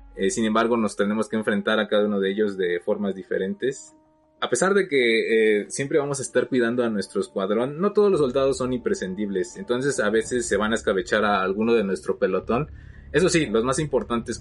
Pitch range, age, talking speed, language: 105-130 Hz, 20-39, 210 wpm, Spanish